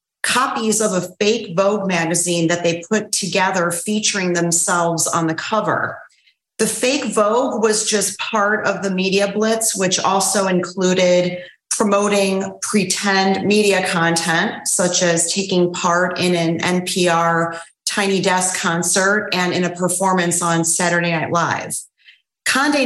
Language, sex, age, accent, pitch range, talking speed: English, female, 30-49, American, 175-205 Hz, 135 wpm